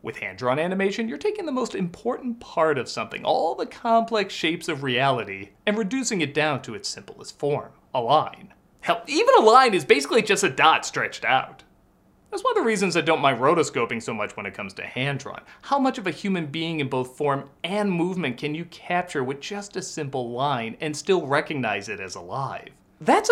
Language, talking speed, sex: English, 205 wpm, male